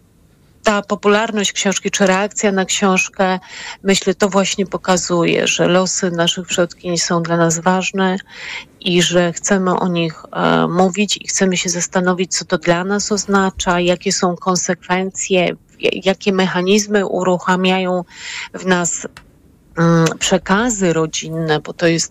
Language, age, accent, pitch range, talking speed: Polish, 30-49, native, 170-190 Hz, 130 wpm